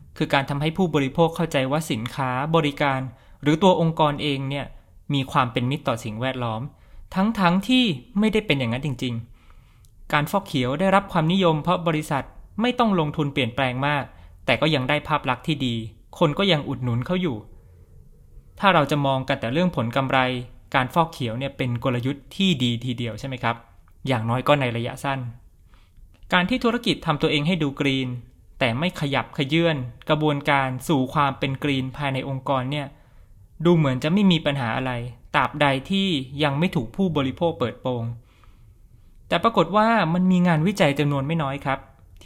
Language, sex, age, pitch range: Thai, male, 20-39, 120-160 Hz